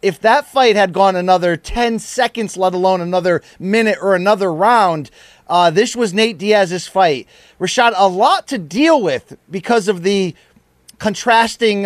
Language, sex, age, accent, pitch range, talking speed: English, male, 30-49, American, 190-270 Hz, 155 wpm